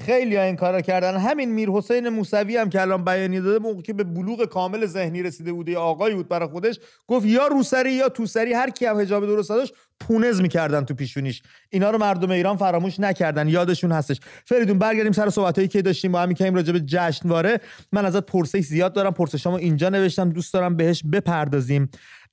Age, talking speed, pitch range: 30-49, 195 wpm, 160-205 Hz